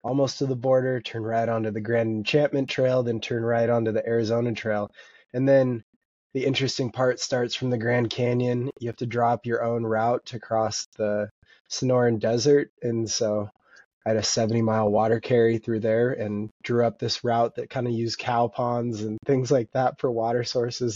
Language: English